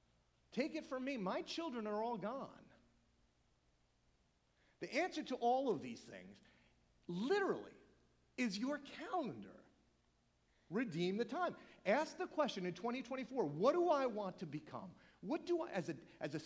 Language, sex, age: English, male, 40-59